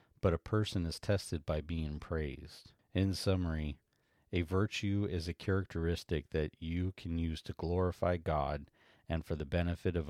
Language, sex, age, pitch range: English, male, 40-59, 80-95 Hz